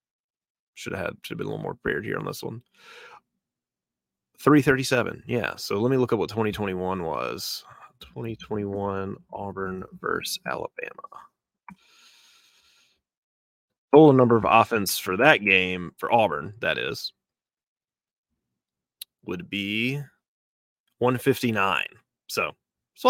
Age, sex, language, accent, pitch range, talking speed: 30-49, male, English, American, 100-135 Hz, 135 wpm